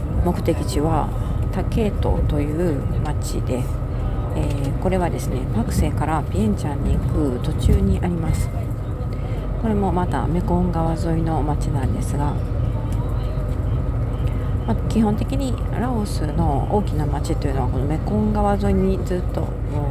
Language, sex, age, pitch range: Japanese, female, 40-59, 100-115 Hz